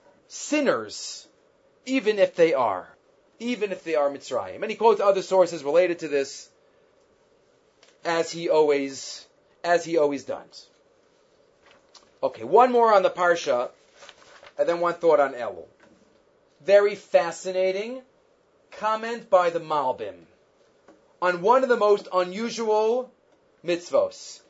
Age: 30-49